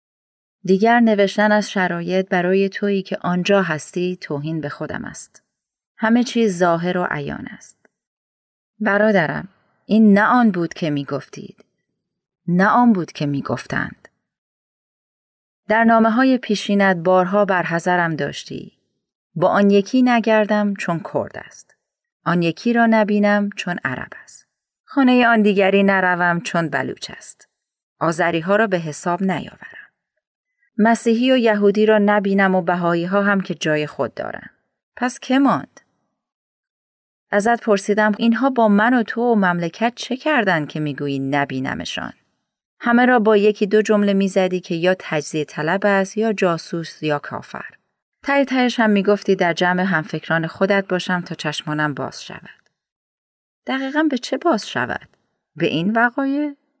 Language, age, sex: Persian, 30-49, female